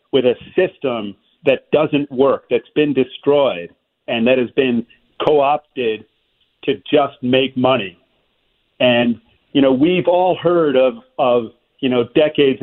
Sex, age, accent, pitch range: male, 40-59, American, 115-135 Hz